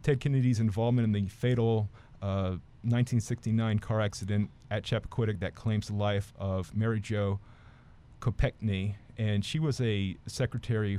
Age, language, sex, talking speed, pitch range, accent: 30-49, English, male, 135 wpm, 100-120 Hz, American